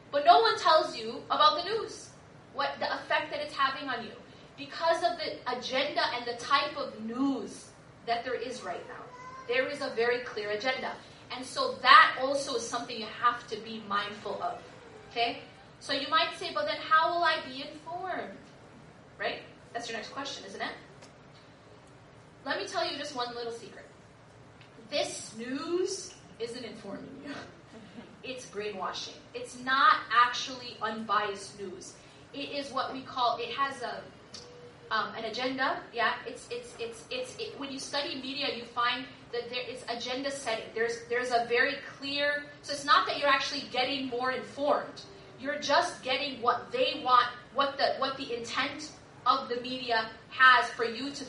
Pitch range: 235-290 Hz